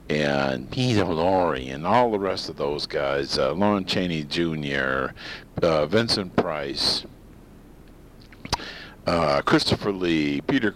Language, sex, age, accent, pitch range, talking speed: English, male, 50-69, American, 70-100 Hz, 115 wpm